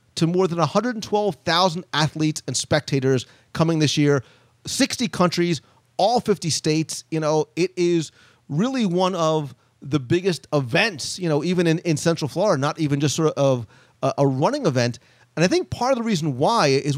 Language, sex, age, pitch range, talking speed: English, male, 40-59, 140-190 Hz, 175 wpm